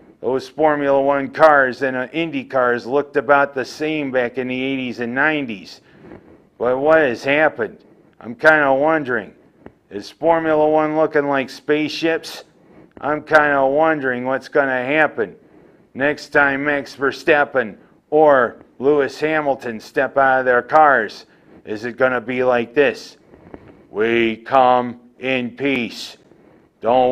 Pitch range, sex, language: 125-140 Hz, male, English